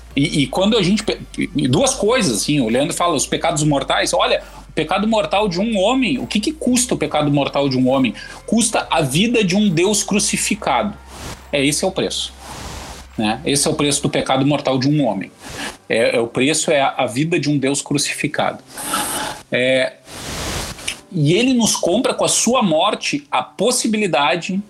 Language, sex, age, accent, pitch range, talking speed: Portuguese, male, 40-59, Brazilian, 135-205 Hz, 185 wpm